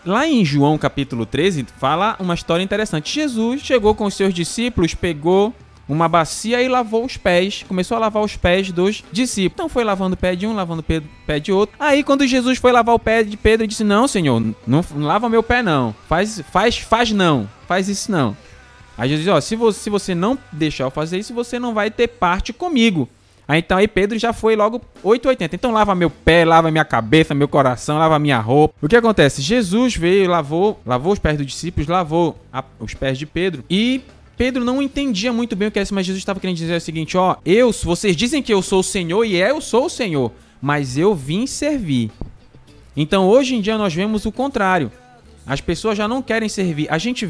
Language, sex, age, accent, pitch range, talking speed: Portuguese, male, 20-39, Brazilian, 155-225 Hz, 215 wpm